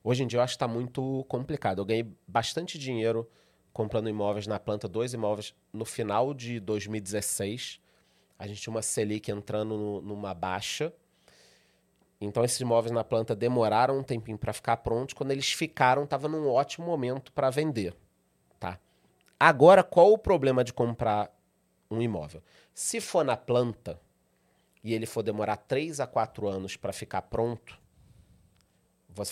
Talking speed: 160 wpm